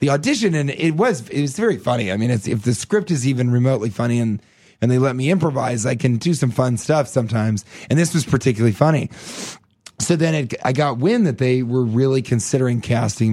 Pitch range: 115-145 Hz